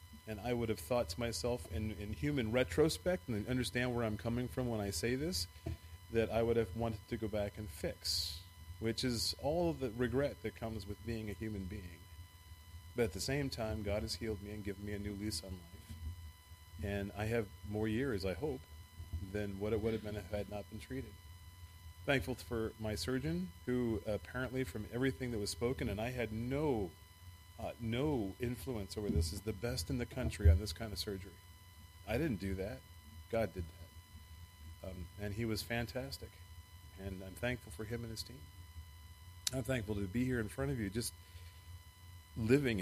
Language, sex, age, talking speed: English, male, 30-49, 200 wpm